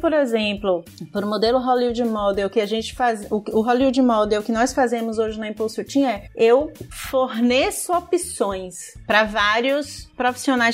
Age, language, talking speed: 30-49, Portuguese, 155 wpm